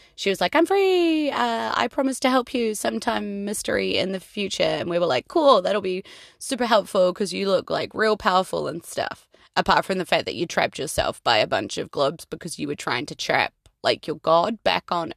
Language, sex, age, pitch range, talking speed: English, female, 20-39, 180-265 Hz, 225 wpm